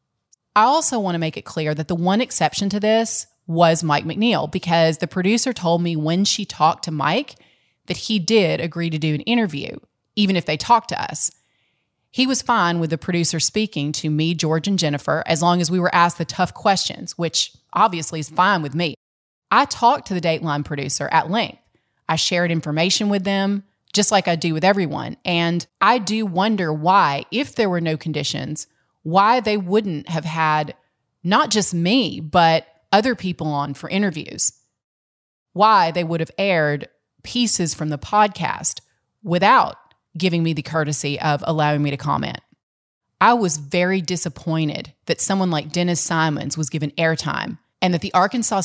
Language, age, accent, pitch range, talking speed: English, 30-49, American, 155-195 Hz, 180 wpm